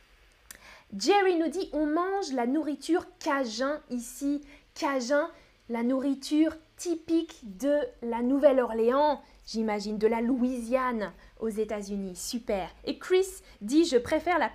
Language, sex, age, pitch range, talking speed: French, female, 20-39, 245-340 Hz, 125 wpm